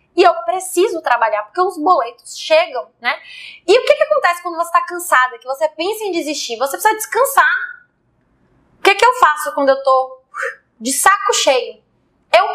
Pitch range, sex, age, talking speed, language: 260-360 Hz, female, 20-39, 180 wpm, Portuguese